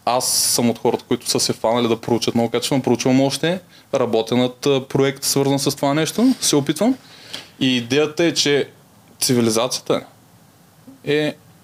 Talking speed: 145 wpm